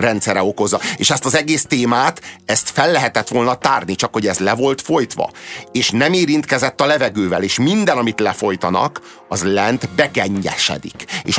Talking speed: 165 wpm